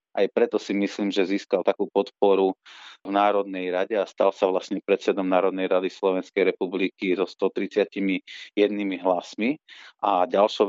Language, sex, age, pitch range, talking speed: Slovak, male, 30-49, 95-110 Hz, 140 wpm